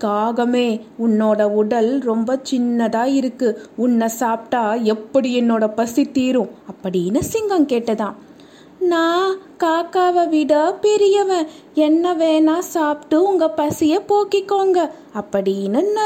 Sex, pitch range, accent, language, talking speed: female, 215-310 Hz, native, Tamil, 95 wpm